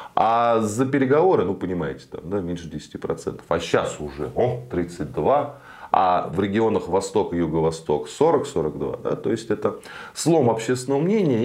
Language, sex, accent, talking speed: Russian, male, native, 150 wpm